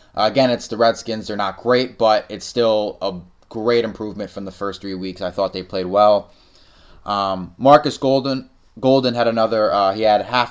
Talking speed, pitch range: 195 wpm, 100-120 Hz